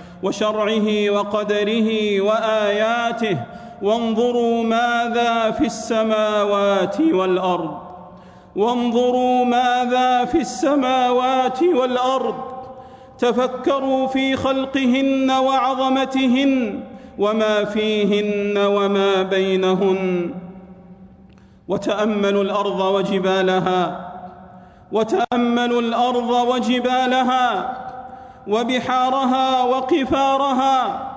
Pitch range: 190-255 Hz